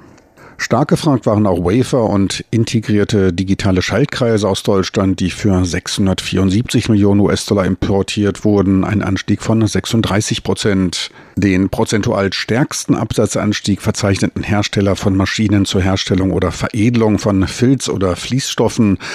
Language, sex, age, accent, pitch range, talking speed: German, male, 50-69, German, 95-115 Hz, 120 wpm